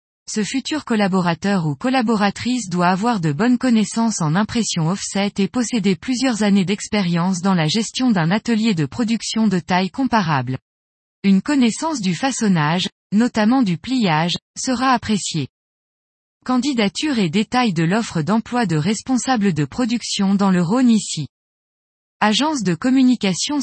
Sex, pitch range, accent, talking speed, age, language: female, 175-245 Hz, French, 135 wpm, 20-39, French